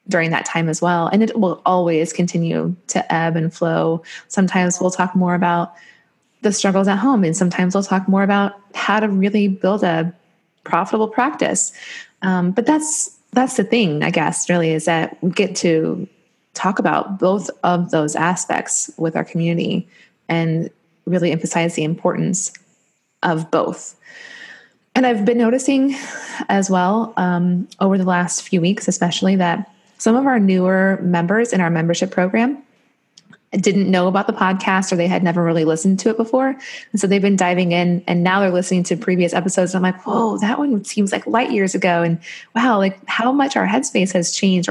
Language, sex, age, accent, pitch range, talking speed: English, female, 20-39, American, 175-220 Hz, 185 wpm